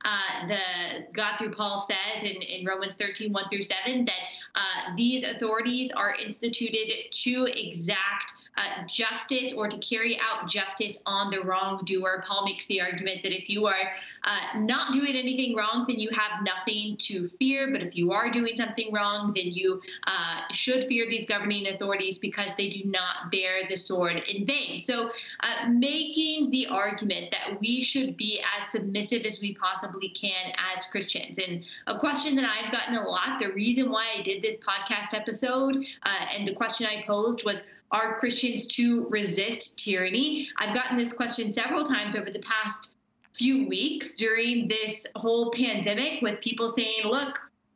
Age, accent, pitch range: 20-39, American, 200-240 Hz